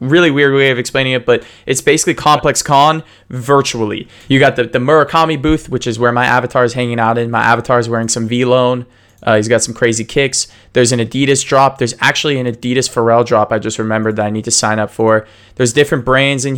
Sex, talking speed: male, 230 wpm